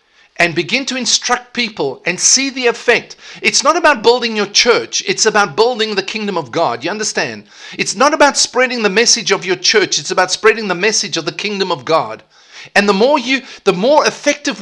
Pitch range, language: 170-240 Hz, English